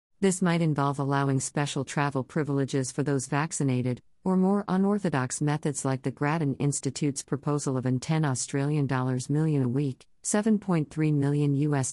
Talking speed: 145 wpm